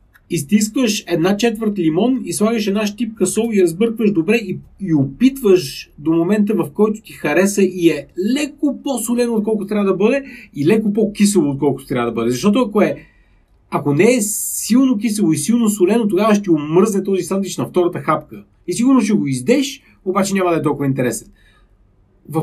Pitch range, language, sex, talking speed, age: 150-215 Hz, Bulgarian, male, 180 wpm, 40-59